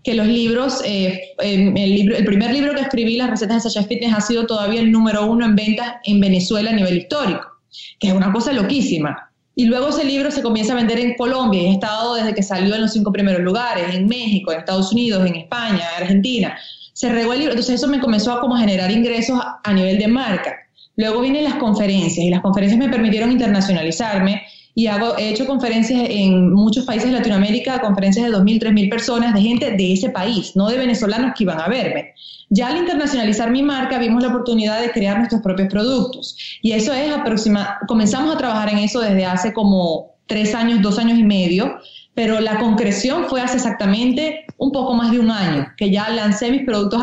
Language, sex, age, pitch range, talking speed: Spanish, female, 20-39, 205-240 Hz, 210 wpm